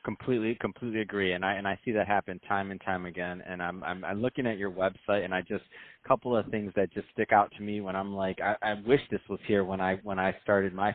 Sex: male